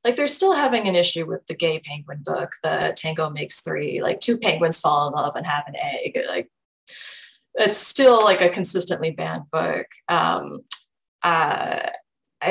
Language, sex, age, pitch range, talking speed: English, female, 20-39, 160-245 Hz, 170 wpm